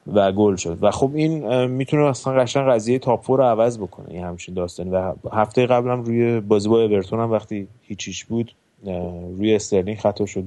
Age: 30-49